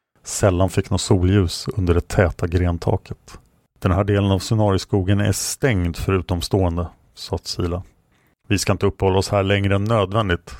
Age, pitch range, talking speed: 40-59, 90-105 Hz, 155 wpm